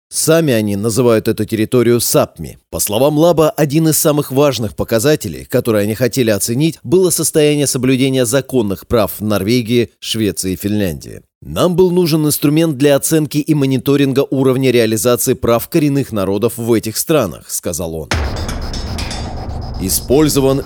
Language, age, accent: Russian, 30-49, native